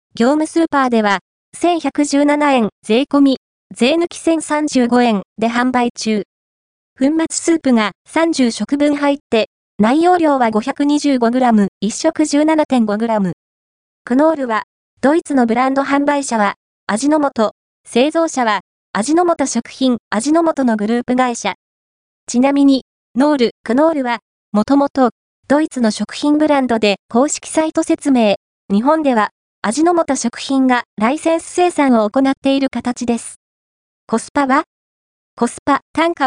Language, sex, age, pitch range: Japanese, female, 20-39, 225-295 Hz